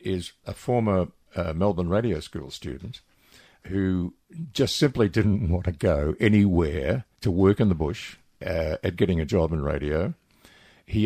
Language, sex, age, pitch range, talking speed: English, male, 50-69, 85-110 Hz, 155 wpm